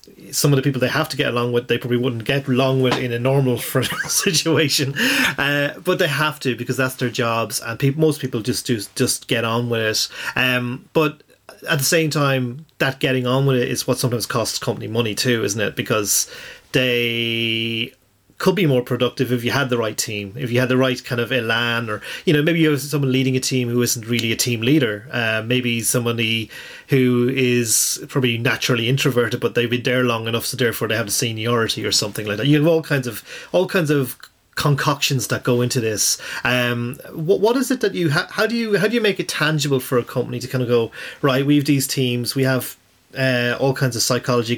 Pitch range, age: 120-140 Hz, 30-49